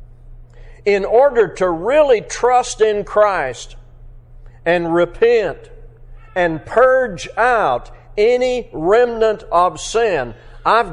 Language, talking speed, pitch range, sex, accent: English, 95 wpm, 120-205 Hz, male, American